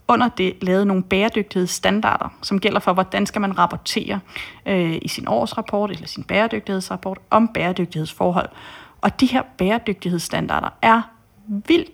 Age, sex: 30-49, female